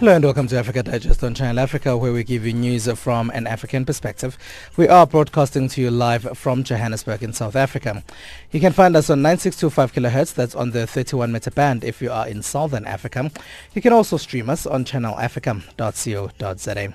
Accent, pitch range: South African, 110-140 Hz